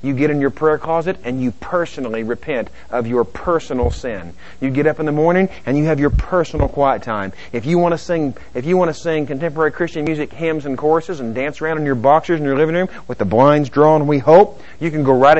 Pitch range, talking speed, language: 100-145 Hz, 245 wpm, English